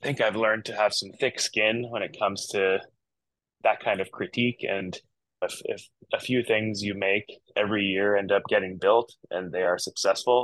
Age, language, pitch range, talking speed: 20-39, English, 95-115 Hz, 200 wpm